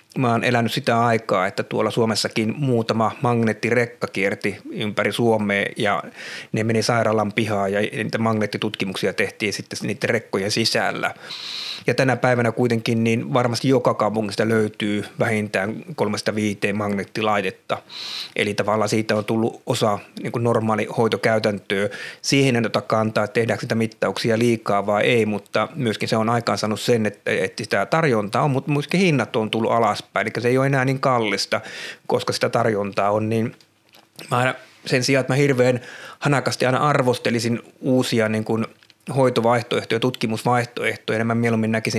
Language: Finnish